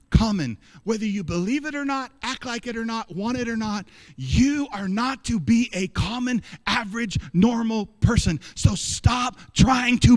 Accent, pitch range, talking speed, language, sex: American, 170-240 Hz, 175 wpm, English, male